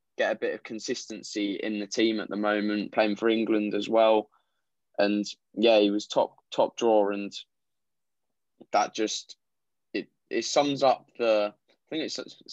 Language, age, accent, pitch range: English, 10-29, British, 100-115 Hz